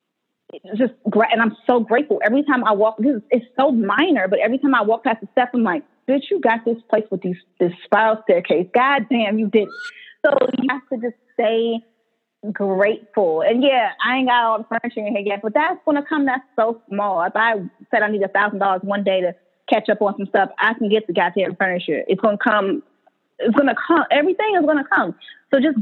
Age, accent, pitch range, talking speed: 20-39, American, 205-265 Hz, 225 wpm